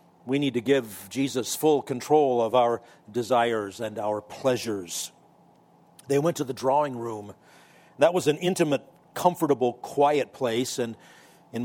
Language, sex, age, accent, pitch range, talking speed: English, male, 50-69, American, 120-160 Hz, 145 wpm